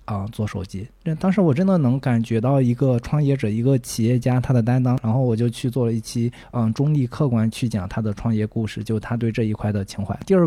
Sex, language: male, Chinese